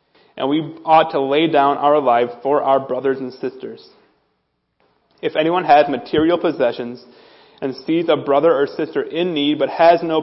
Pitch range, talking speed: 135-165 Hz, 170 wpm